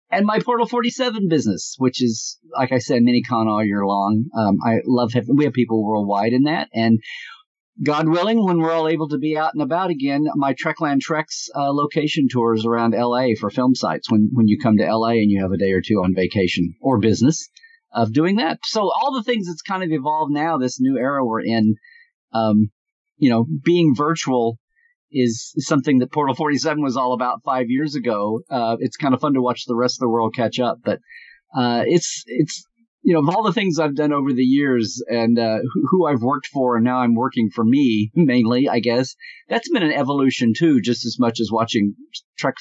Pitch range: 115-160 Hz